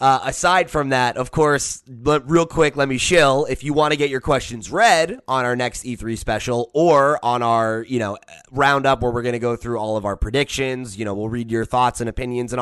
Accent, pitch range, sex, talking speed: American, 110-140 Hz, male, 240 wpm